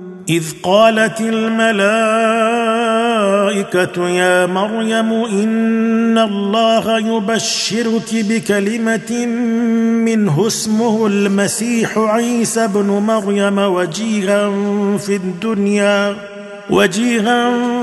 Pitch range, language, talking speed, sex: 200-230 Hz, Arabic, 65 wpm, male